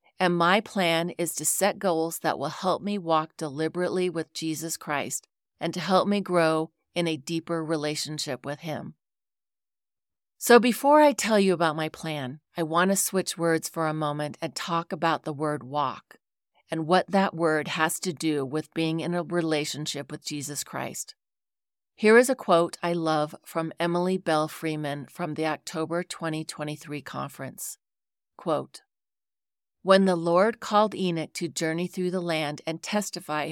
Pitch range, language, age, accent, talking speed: 150-180 Hz, English, 40-59, American, 165 wpm